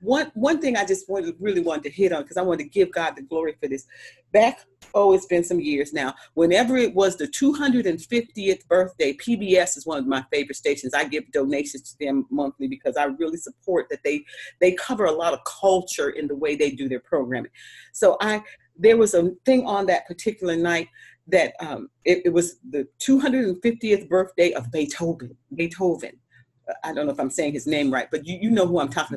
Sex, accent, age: female, American, 40-59